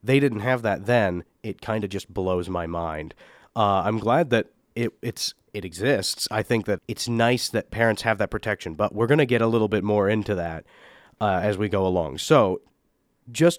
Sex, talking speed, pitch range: male, 210 wpm, 100-125 Hz